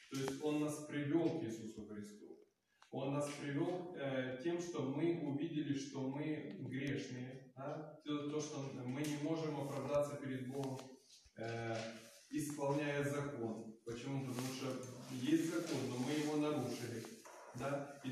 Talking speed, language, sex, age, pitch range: 135 wpm, Ukrainian, male, 20-39, 130-155 Hz